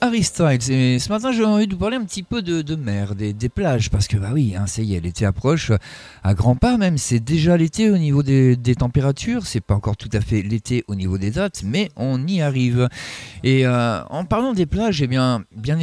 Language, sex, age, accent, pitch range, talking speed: French, male, 50-69, French, 115-165 Hz, 245 wpm